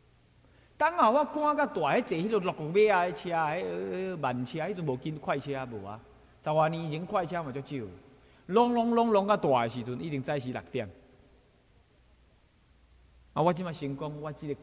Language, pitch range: Chinese, 125-185 Hz